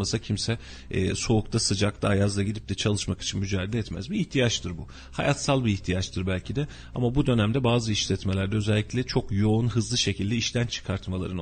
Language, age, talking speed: Turkish, 40-59, 165 wpm